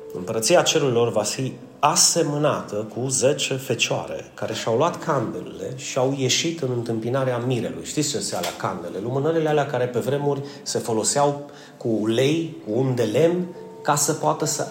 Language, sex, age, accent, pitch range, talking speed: Romanian, male, 30-49, native, 120-165 Hz, 165 wpm